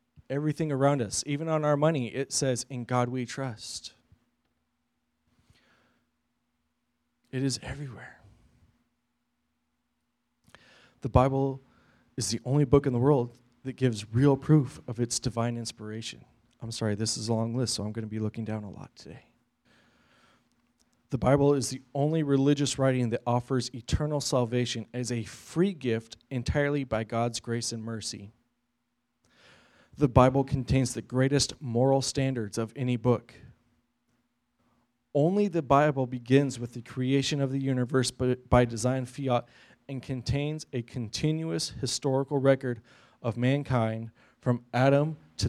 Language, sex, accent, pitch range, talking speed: English, male, American, 115-135 Hz, 140 wpm